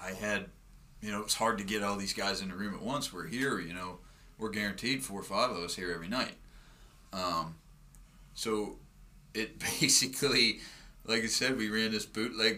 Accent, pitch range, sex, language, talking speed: American, 95-110 Hz, male, English, 200 wpm